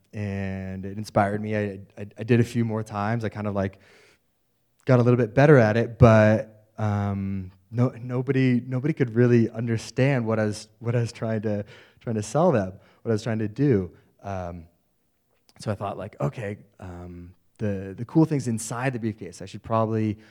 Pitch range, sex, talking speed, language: 100-120 Hz, male, 195 wpm, English